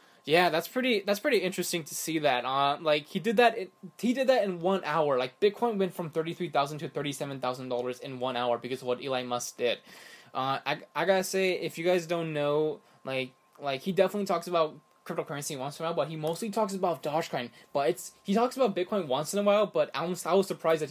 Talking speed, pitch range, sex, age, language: 240 wpm, 140-185 Hz, male, 10-29, English